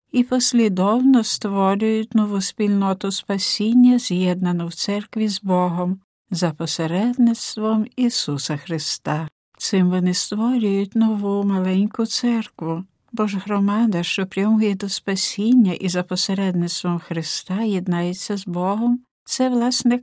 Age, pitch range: 60-79, 175-220 Hz